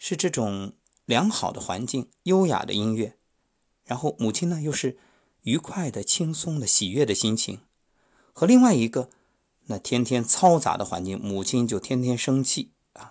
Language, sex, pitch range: Chinese, male, 105-165 Hz